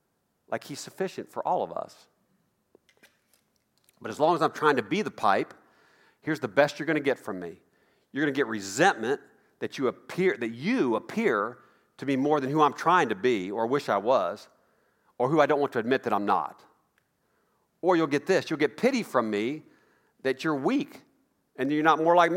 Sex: male